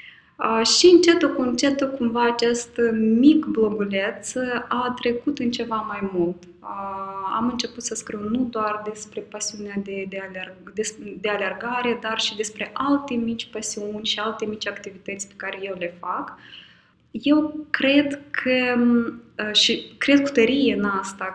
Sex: female